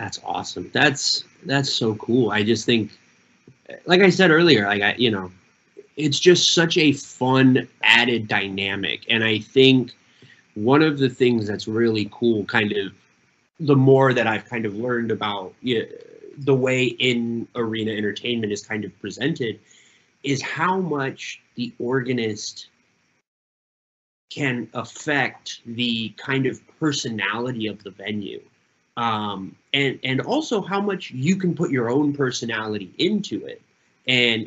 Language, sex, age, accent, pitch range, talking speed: English, male, 20-39, American, 110-140 Hz, 140 wpm